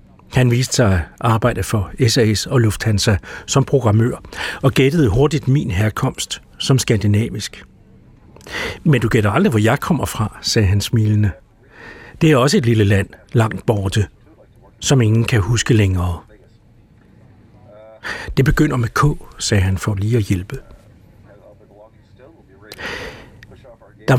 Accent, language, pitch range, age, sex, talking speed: native, Danish, 105-130 Hz, 60-79, male, 130 wpm